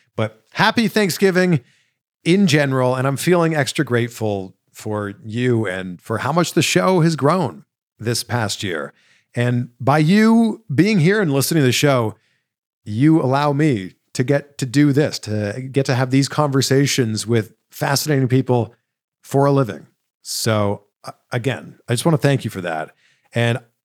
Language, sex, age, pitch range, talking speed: English, male, 50-69, 120-160 Hz, 160 wpm